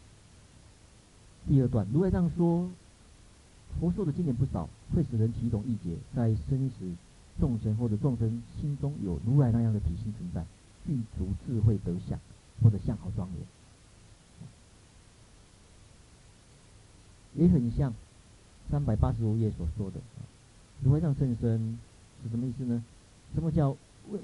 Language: Chinese